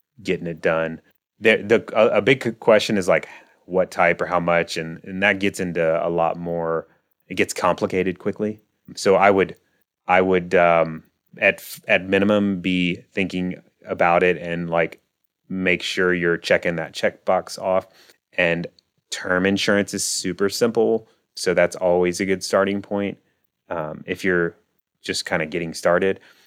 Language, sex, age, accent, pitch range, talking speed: English, male, 30-49, American, 85-100 Hz, 160 wpm